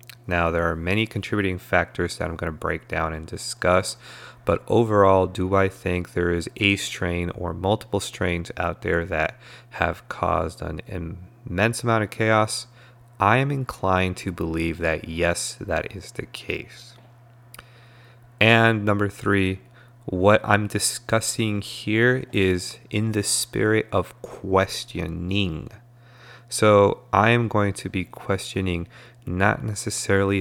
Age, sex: 30-49, male